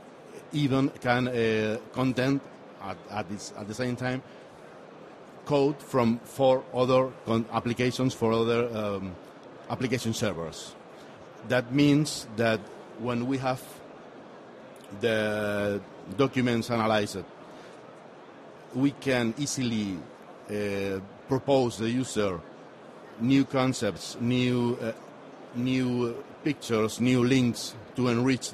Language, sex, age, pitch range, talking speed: German, male, 60-79, 115-135 Hz, 100 wpm